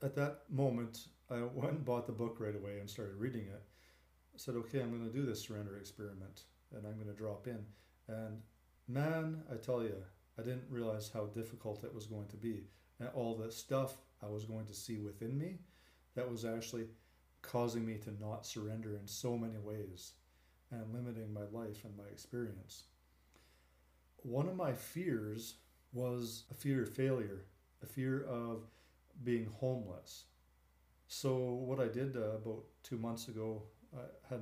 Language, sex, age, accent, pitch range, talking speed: English, male, 40-59, American, 105-120 Hz, 175 wpm